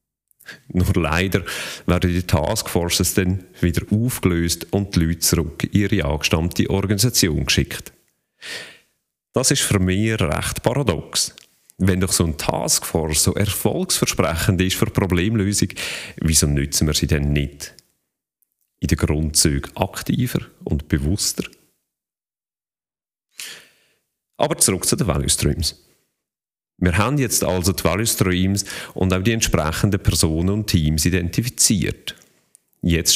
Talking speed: 120 wpm